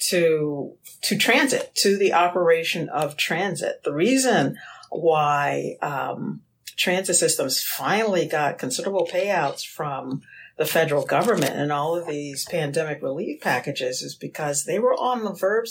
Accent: American